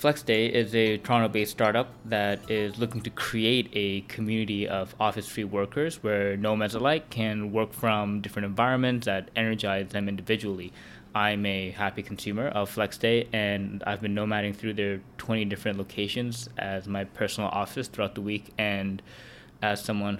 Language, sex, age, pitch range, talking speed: English, male, 20-39, 100-110 Hz, 155 wpm